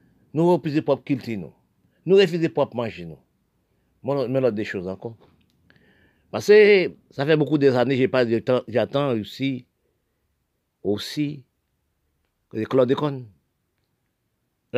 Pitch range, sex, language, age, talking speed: 110-150 Hz, male, French, 50-69, 135 wpm